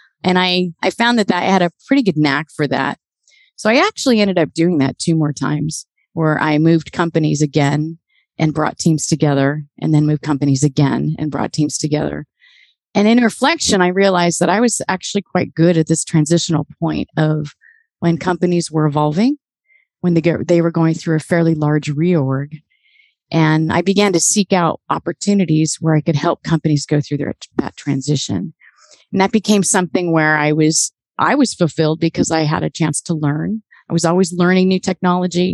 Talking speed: 185 wpm